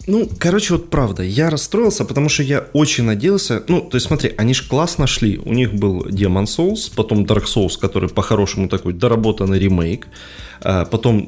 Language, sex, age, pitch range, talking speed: Ukrainian, male, 20-39, 95-125 Hz, 175 wpm